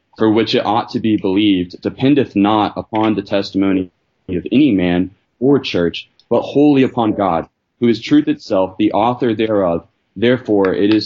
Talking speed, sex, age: 170 wpm, male, 30-49